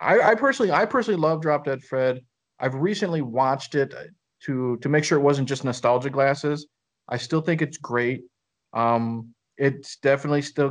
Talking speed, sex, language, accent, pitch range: 175 wpm, male, English, American, 120-150 Hz